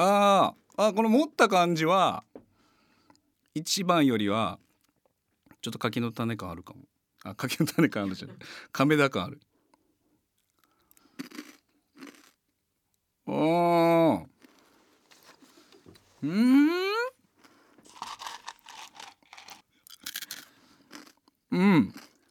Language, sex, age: Japanese, male, 50-69